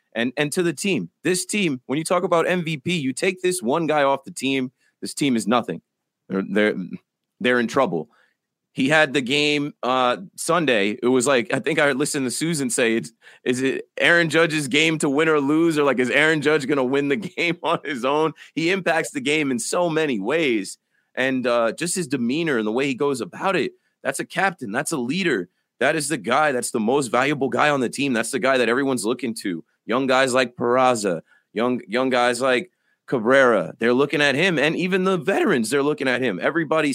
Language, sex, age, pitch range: English, male, 30-49, 120-160 Hz